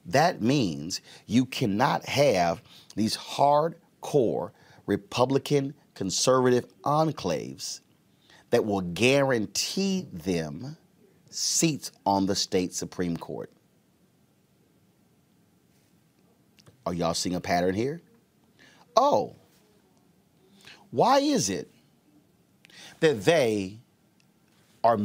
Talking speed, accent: 80 wpm, American